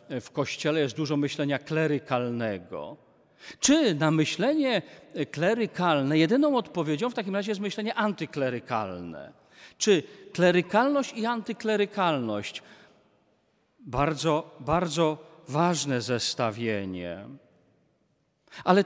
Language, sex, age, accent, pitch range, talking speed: Polish, male, 40-59, native, 140-205 Hz, 85 wpm